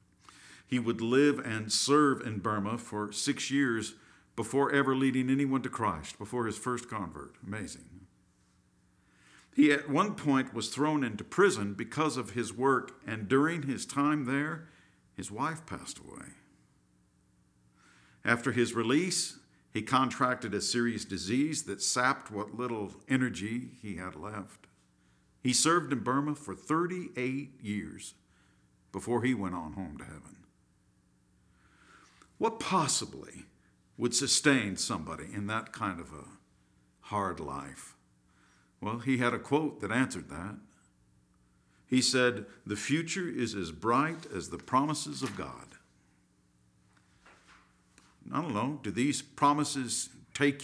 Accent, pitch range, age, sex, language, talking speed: American, 90-135 Hz, 50-69, male, English, 130 wpm